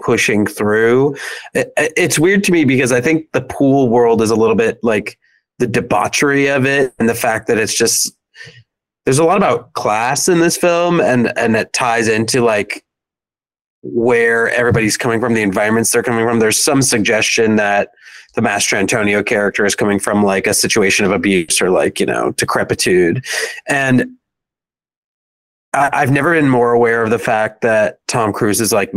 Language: English